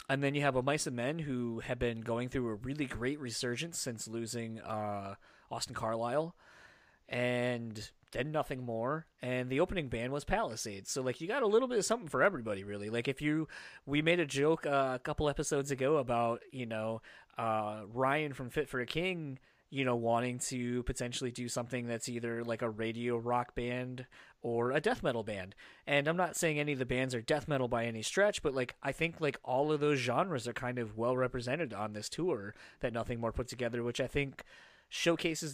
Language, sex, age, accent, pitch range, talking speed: English, male, 20-39, American, 115-145 Hz, 210 wpm